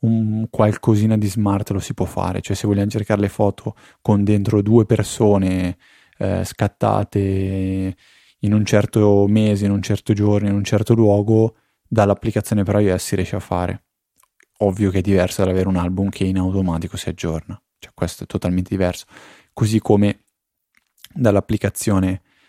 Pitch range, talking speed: 95-105 Hz, 160 wpm